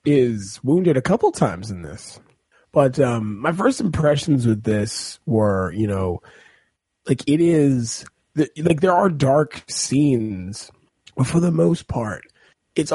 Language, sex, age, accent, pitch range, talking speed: English, male, 30-49, American, 120-160 Hz, 145 wpm